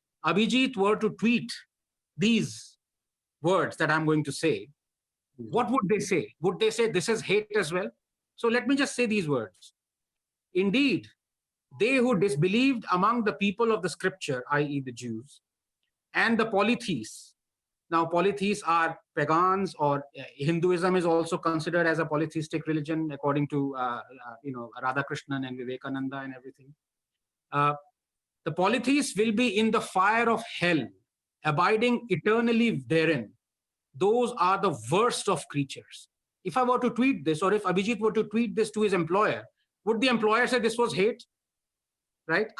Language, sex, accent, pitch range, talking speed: Hindi, male, native, 160-225 Hz, 160 wpm